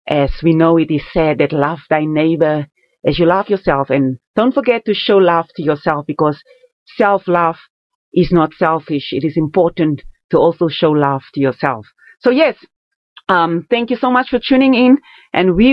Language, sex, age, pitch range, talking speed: English, female, 40-59, 145-180 Hz, 185 wpm